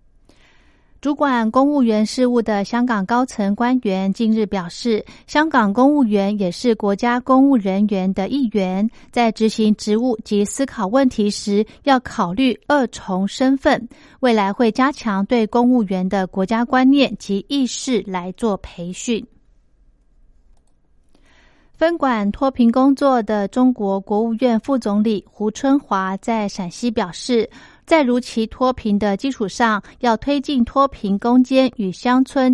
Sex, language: female, Chinese